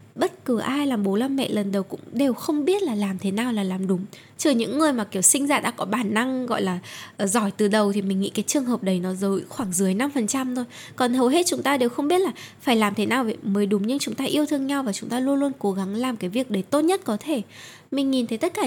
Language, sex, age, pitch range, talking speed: Vietnamese, female, 10-29, 200-275 Hz, 295 wpm